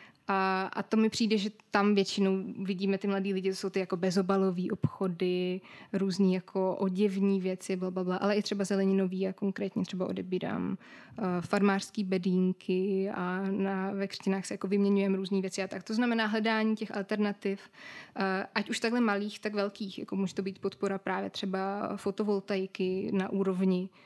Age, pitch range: 20-39, 190-205 Hz